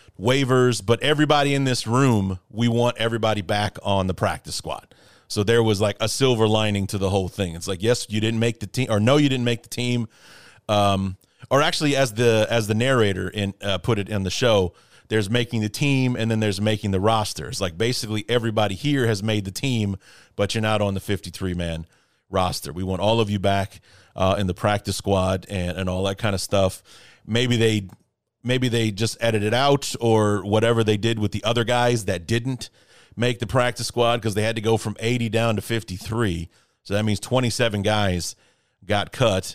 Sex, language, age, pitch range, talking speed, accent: male, English, 30-49, 95-120 Hz, 210 wpm, American